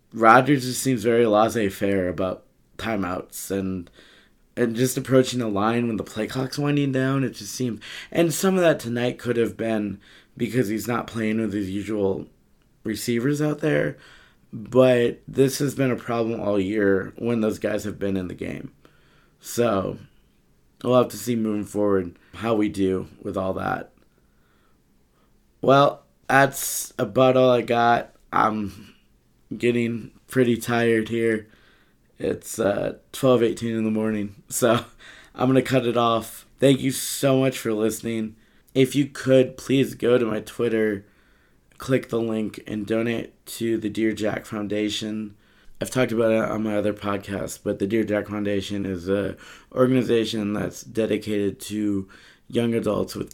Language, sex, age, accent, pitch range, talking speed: English, male, 20-39, American, 105-120 Hz, 160 wpm